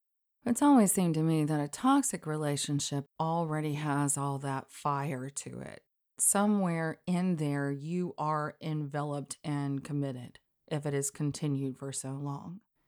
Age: 30-49